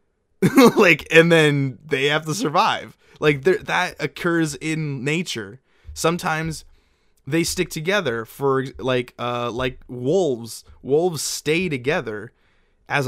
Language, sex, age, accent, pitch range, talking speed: English, male, 20-39, American, 130-175 Hz, 115 wpm